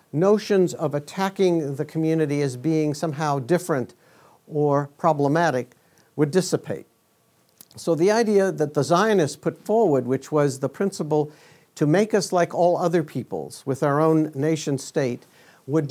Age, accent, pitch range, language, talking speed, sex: 60-79, American, 145-180 Hz, English, 140 wpm, male